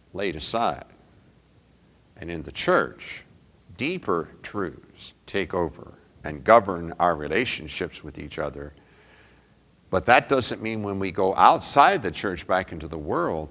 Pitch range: 85-110 Hz